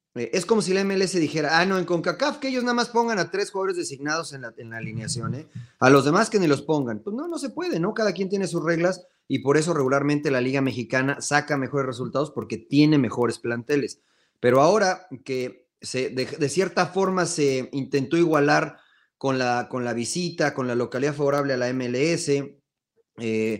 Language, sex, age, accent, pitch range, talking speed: Spanish, male, 30-49, Mexican, 120-165 Hz, 205 wpm